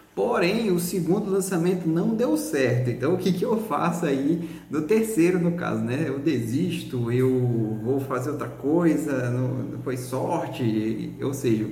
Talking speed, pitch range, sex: 155 wpm, 125-160 Hz, male